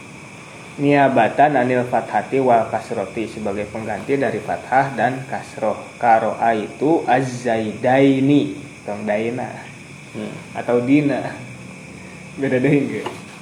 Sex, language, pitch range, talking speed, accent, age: male, Indonesian, 115-145 Hz, 90 wpm, native, 20-39